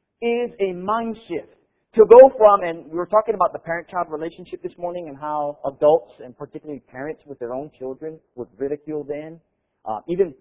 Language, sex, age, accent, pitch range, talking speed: English, male, 40-59, American, 155-230 Hz, 180 wpm